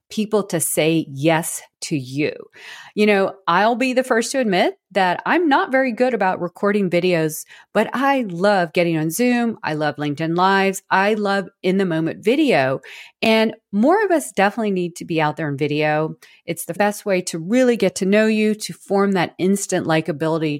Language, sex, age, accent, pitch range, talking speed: English, female, 40-59, American, 170-230 Hz, 190 wpm